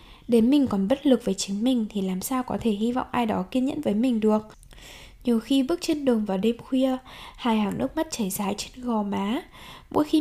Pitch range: 215-280 Hz